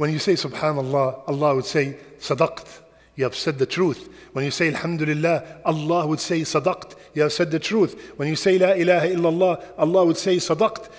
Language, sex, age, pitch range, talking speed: English, male, 50-69, 140-175 Hz, 195 wpm